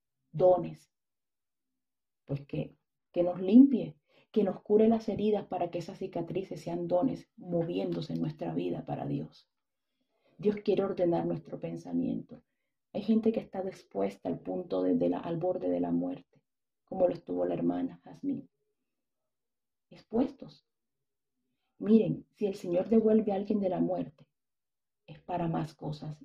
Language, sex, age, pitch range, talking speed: English, female, 40-59, 125-205 Hz, 145 wpm